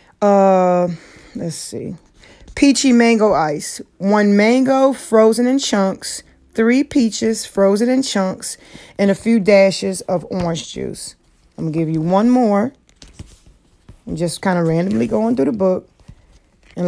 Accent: American